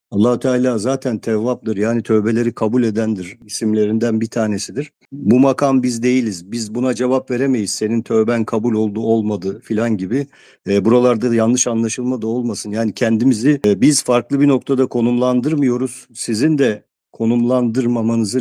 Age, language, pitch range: 50-69, Japanese, 110-130 Hz